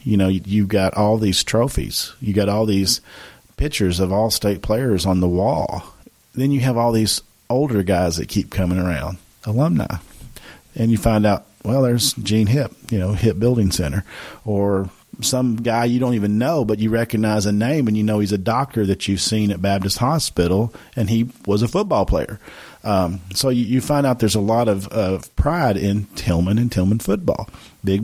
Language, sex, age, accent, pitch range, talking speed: English, male, 40-59, American, 95-115 Hz, 195 wpm